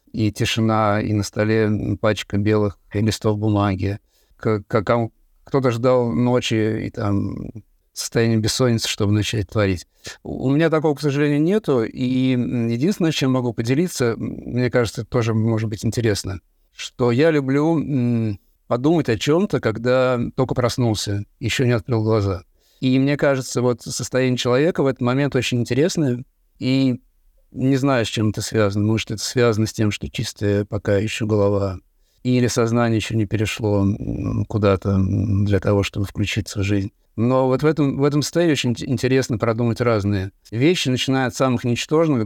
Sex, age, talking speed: male, 50-69, 150 wpm